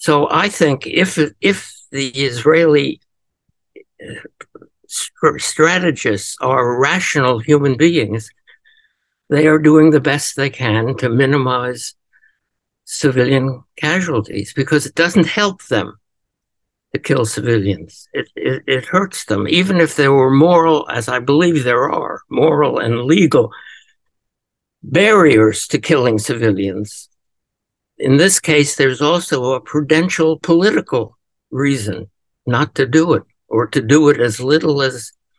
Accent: American